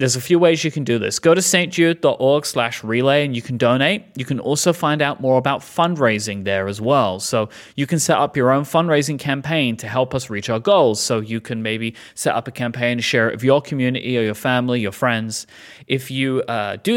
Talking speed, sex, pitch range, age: 235 wpm, male, 115-150 Hz, 30-49